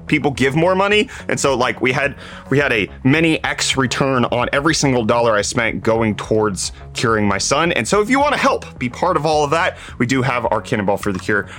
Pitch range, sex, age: 105-160 Hz, male, 30-49